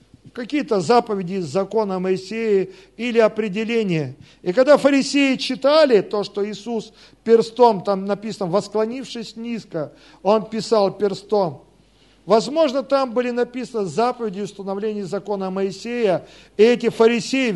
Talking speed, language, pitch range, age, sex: 115 wpm, Russian, 185-235 Hz, 50-69, male